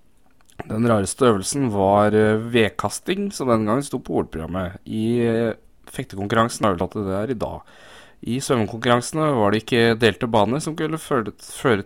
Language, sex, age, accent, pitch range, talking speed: English, male, 20-39, Norwegian, 100-120 Hz, 150 wpm